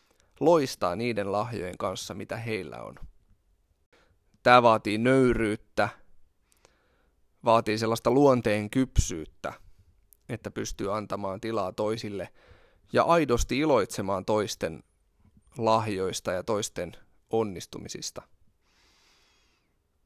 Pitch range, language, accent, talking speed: 95-120 Hz, Finnish, native, 80 wpm